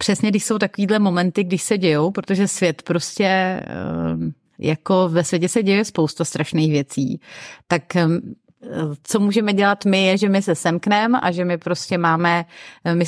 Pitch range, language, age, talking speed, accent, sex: 170-195 Hz, Czech, 30-49, 160 wpm, native, female